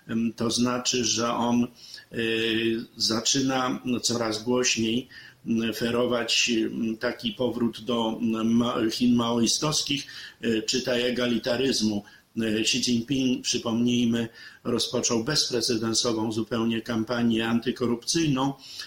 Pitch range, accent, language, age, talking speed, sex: 115-130 Hz, native, Polish, 50-69, 75 wpm, male